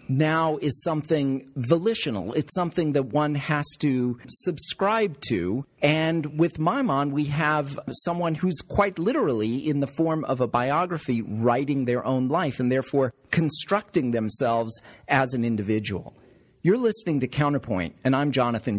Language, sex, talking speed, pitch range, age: English, male, 145 wpm, 125-165 Hz, 40-59